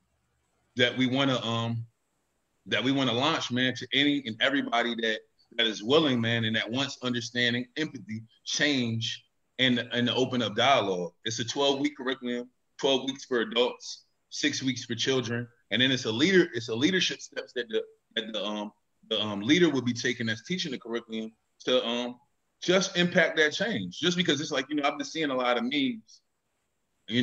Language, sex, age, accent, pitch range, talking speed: English, male, 30-49, American, 115-145 Hz, 195 wpm